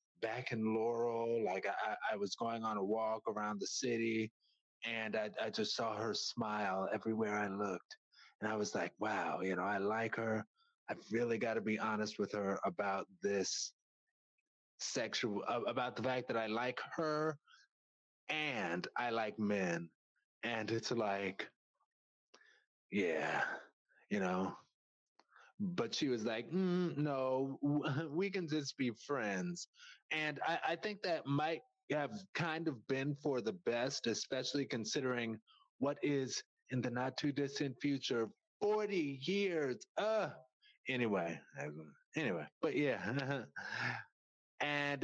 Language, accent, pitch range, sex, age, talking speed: English, American, 110-145 Hz, male, 30-49, 135 wpm